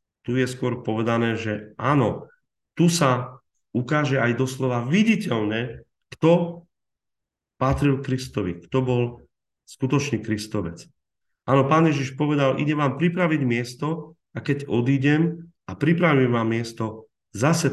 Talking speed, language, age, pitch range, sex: 120 wpm, Slovak, 40-59, 110-140 Hz, male